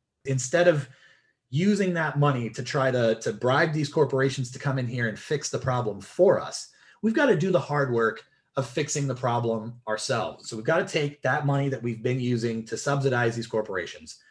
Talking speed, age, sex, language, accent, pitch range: 205 wpm, 30-49, male, English, American, 125-170 Hz